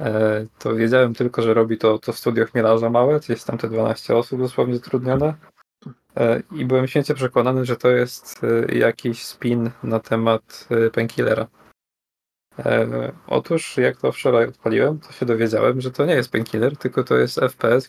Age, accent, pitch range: 20-39, native, 115-125 Hz